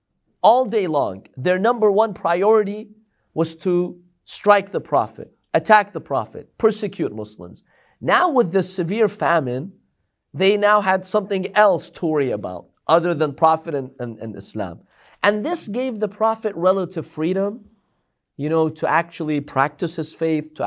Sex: male